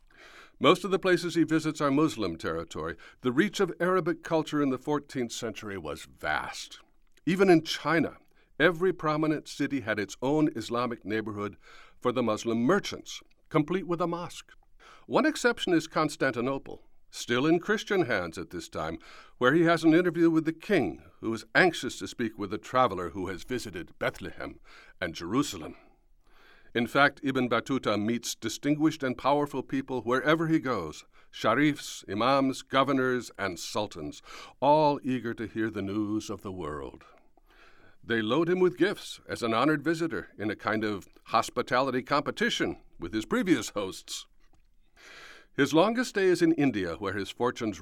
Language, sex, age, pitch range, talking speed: English, male, 60-79, 115-160 Hz, 160 wpm